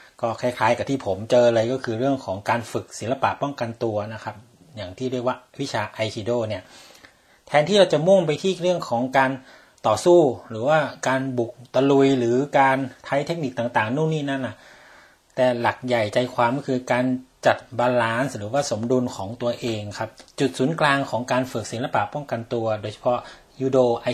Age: 30-49